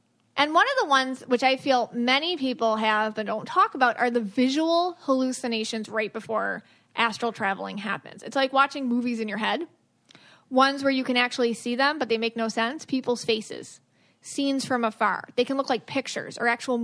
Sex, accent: female, American